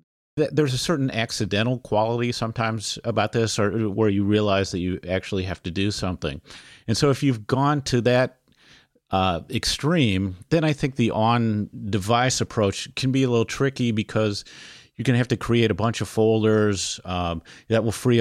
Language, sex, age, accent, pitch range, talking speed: English, male, 40-59, American, 95-120 Hz, 180 wpm